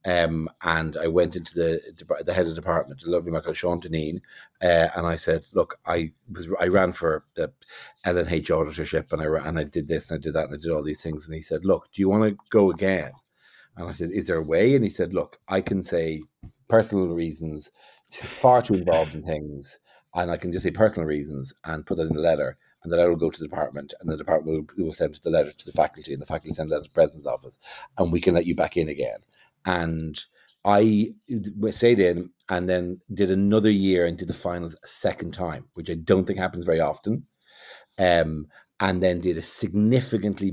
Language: English